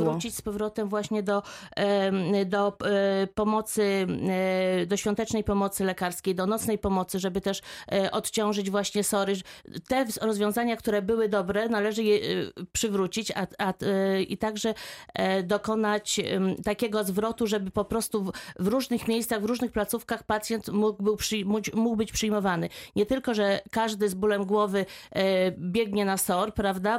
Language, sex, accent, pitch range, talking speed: Polish, female, native, 195-220 Hz, 125 wpm